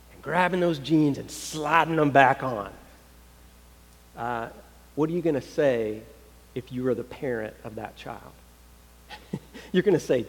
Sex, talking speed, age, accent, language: male, 155 wpm, 40-59, American, English